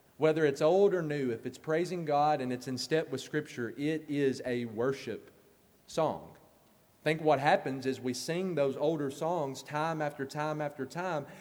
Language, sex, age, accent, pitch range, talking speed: English, male, 30-49, American, 145-205 Hz, 185 wpm